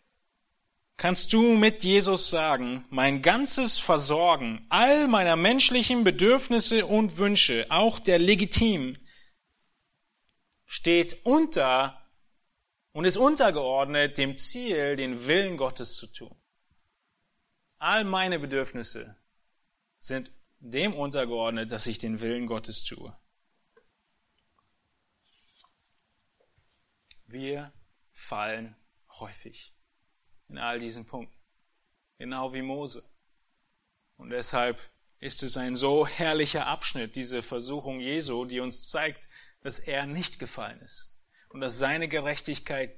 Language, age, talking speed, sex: German, 30-49, 105 wpm, male